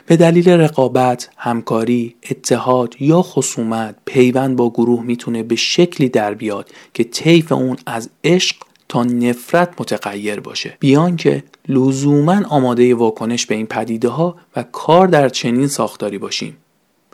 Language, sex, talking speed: Persian, male, 135 wpm